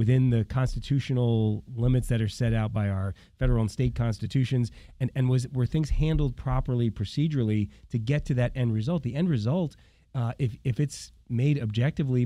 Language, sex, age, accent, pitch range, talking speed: English, male, 30-49, American, 110-140 Hz, 180 wpm